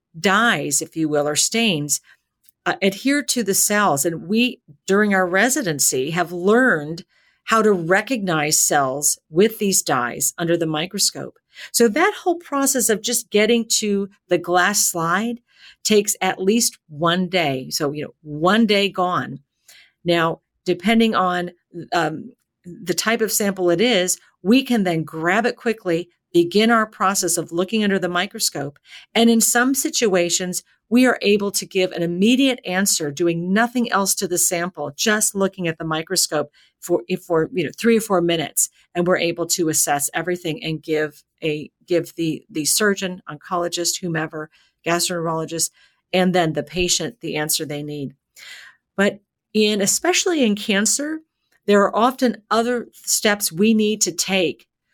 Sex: female